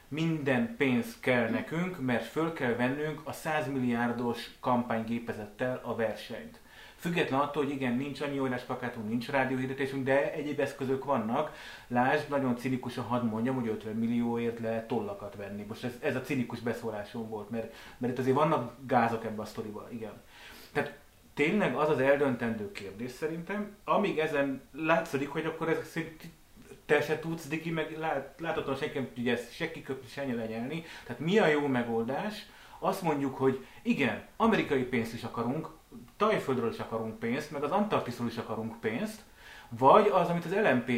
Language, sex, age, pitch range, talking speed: Hungarian, male, 30-49, 115-155 Hz, 160 wpm